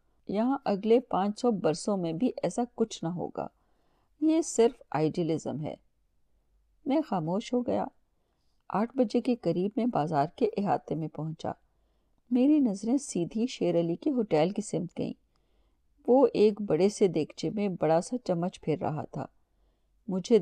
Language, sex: Urdu, female